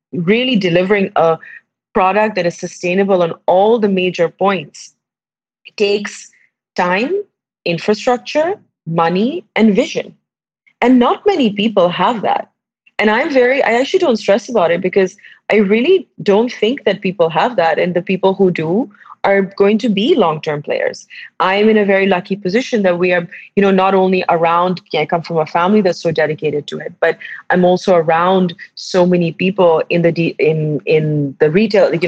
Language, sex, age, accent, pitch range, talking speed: English, female, 30-49, Indian, 170-210 Hz, 170 wpm